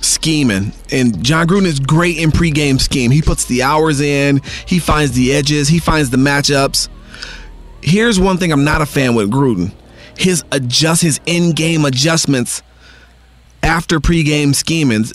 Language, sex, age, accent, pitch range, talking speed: English, male, 40-59, American, 130-170 Hz, 155 wpm